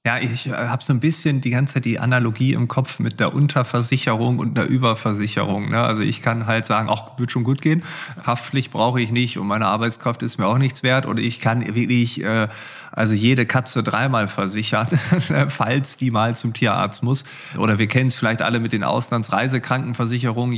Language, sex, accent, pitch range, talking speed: German, male, German, 110-135 Hz, 190 wpm